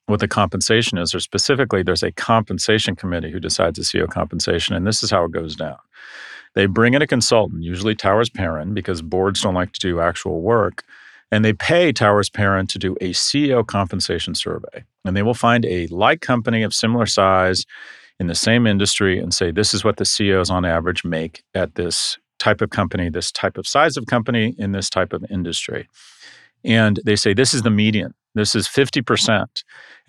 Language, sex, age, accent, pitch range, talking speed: English, male, 40-59, American, 90-115 Hz, 195 wpm